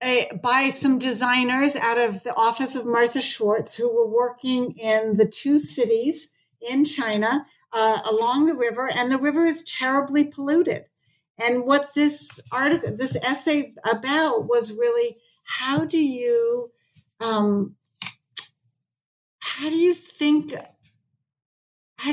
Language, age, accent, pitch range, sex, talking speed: English, 50-69, American, 170-275 Hz, female, 125 wpm